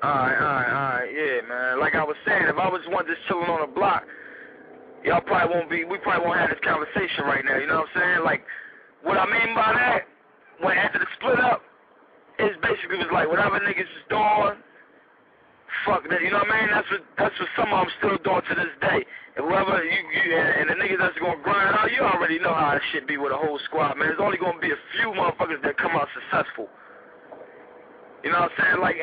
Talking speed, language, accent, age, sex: 230 wpm, English, American, 20-39, male